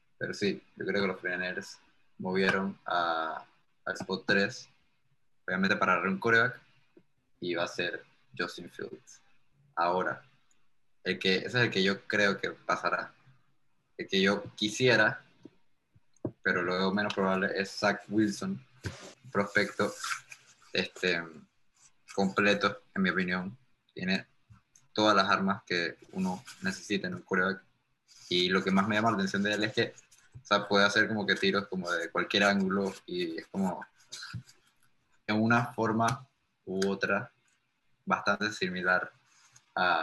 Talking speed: 140 wpm